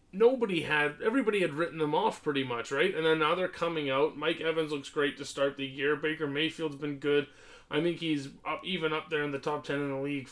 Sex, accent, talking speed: male, American, 240 wpm